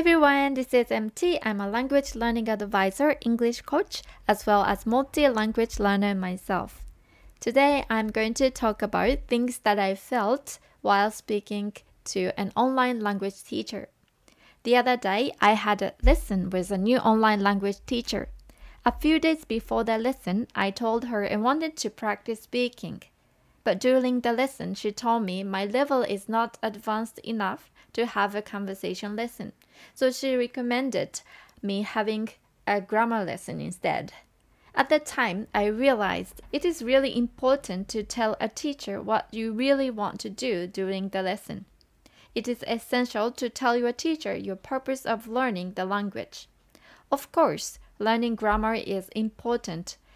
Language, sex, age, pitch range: Japanese, female, 20-39, 205-250 Hz